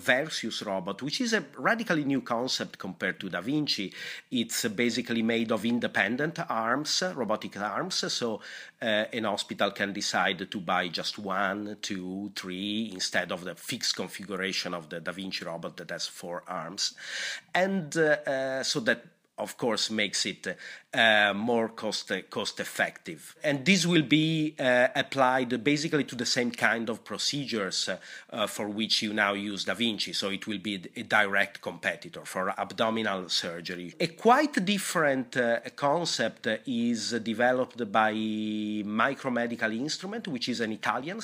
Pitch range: 105-150 Hz